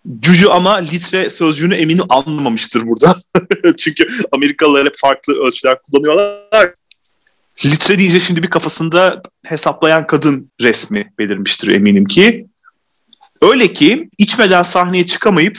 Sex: male